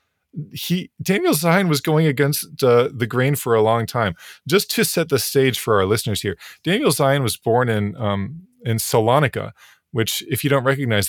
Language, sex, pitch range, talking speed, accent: English, male, 105-145 Hz, 190 wpm, American